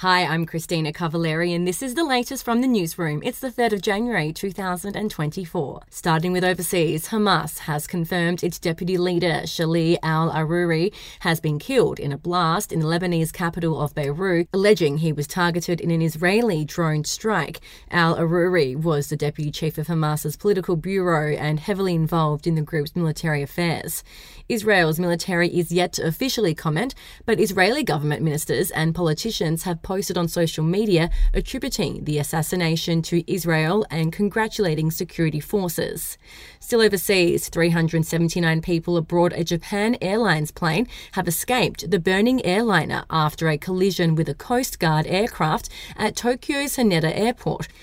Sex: female